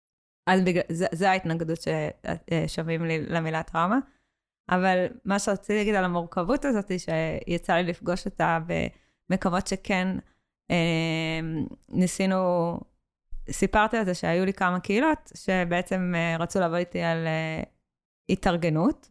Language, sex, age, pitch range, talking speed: Hebrew, female, 20-39, 165-190 Hz, 115 wpm